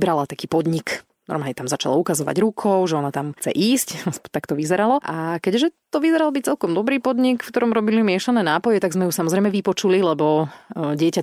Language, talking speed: Slovak, 190 wpm